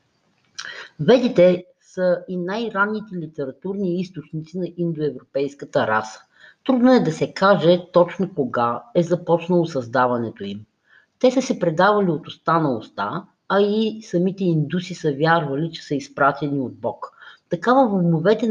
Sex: female